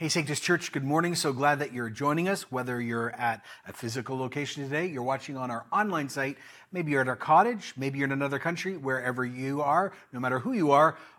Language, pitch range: English, 125-165 Hz